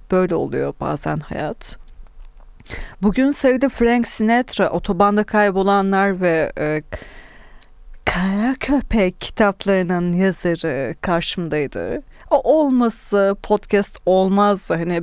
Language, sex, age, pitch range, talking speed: Turkish, female, 30-49, 180-250 Hz, 90 wpm